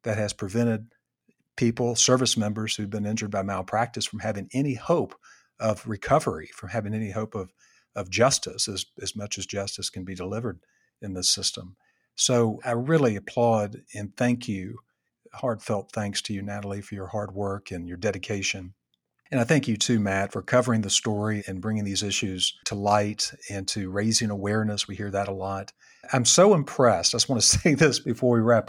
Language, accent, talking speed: English, American, 190 wpm